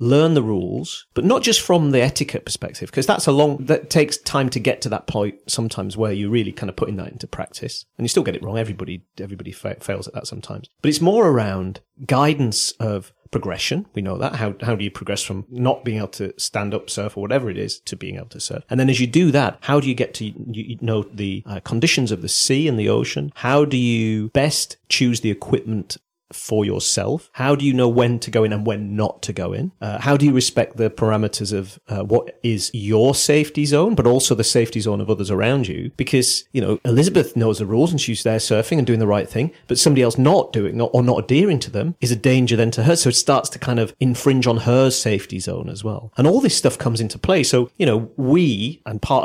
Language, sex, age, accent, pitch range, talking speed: English, male, 40-59, British, 110-135 Hz, 245 wpm